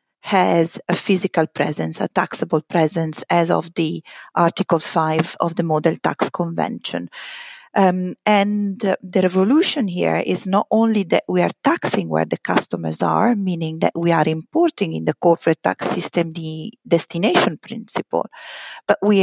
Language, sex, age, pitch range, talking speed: German, female, 40-59, 165-215 Hz, 150 wpm